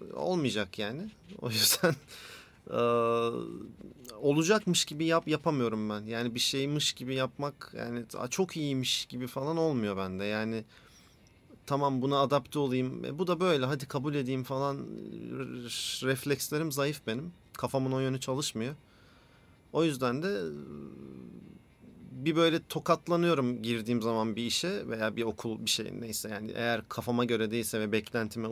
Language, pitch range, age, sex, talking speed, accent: Turkish, 110-145 Hz, 40-59, male, 135 wpm, native